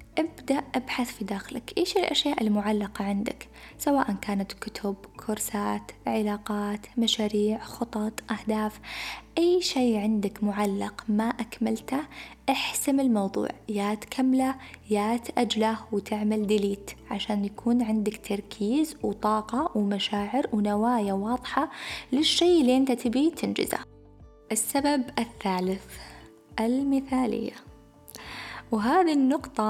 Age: 20-39